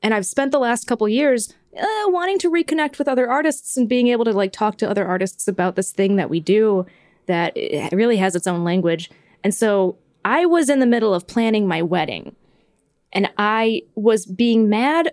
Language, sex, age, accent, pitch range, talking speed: English, female, 20-39, American, 195-250 Hz, 205 wpm